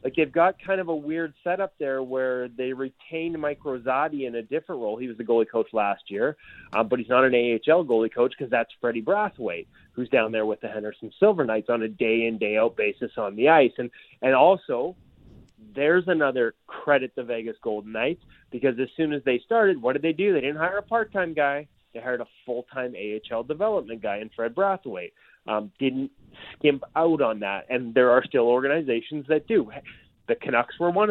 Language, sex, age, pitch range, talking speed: English, male, 30-49, 120-165 Hz, 205 wpm